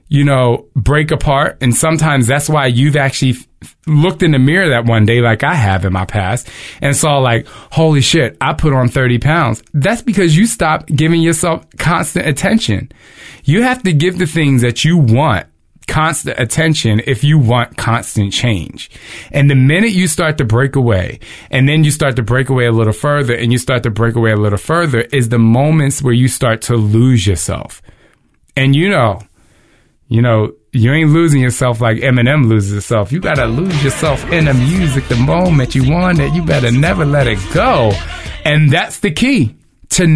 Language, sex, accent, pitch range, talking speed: English, male, American, 115-155 Hz, 195 wpm